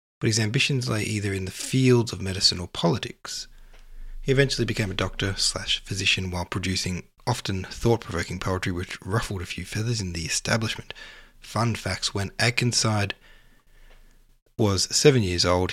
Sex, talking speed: male, 145 wpm